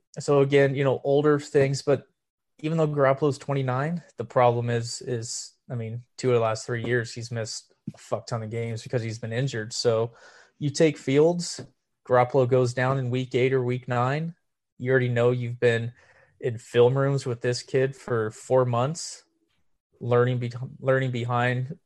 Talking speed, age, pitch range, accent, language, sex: 175 wpm, 20-39, 115-135 Hz, American, English, male